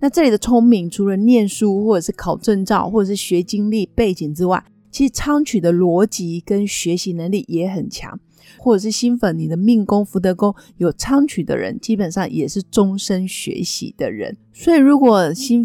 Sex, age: female, 30-49